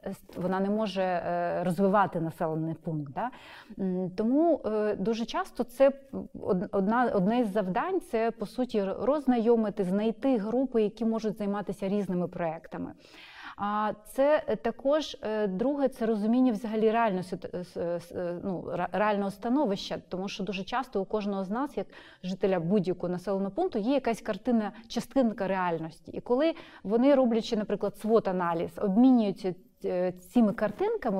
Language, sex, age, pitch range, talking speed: Ukrainian, female, 30-49, 195-245 Hz, 115 wpm